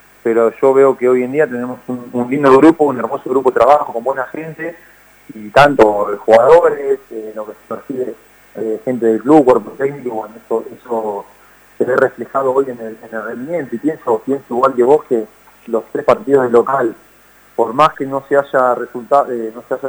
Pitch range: 115-140 Hz